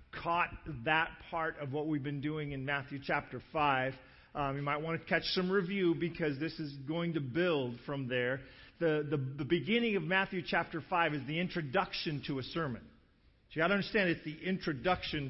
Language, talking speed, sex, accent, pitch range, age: English, 190 wpm, male, American, 150-200 Hz, 40-59